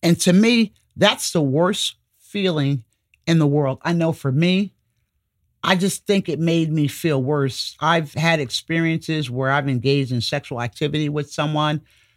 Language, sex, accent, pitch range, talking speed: English, male, American, 120-165 Hz, 165 wpm